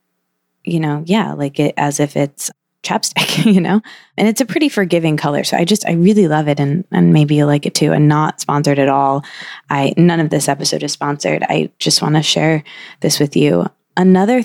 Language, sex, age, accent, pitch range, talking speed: English, female, 20-39, American, 150-185 Hz, 215 wpm